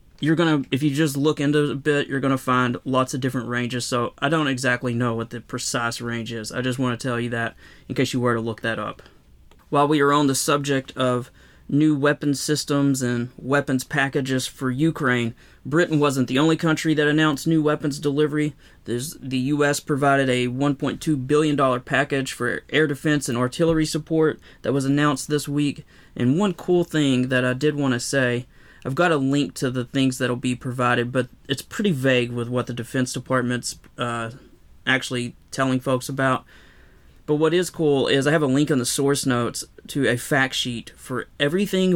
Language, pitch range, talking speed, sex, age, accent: English, 125-150 Hz, 205 wpm, male, 30-49, American